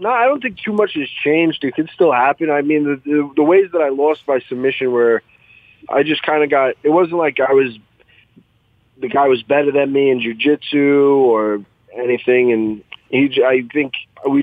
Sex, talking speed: male, 200 wpm